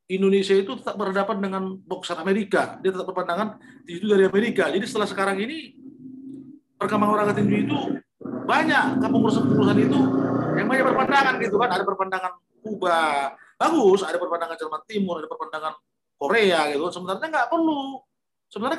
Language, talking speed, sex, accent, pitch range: Indonesian, 150 wpm, male, native, 165-215 Hz